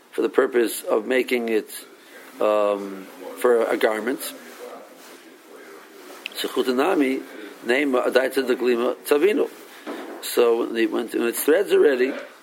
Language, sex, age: English, male, 60-79